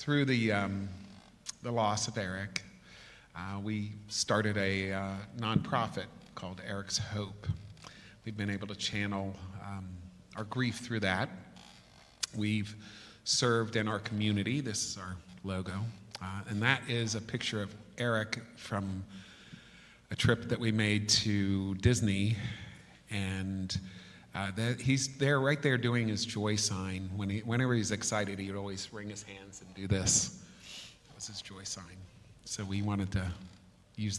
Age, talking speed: 40-59, 150 wpm